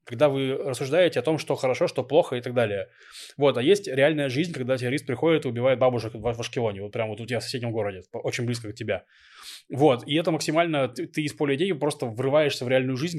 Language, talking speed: Russian, 230 wpm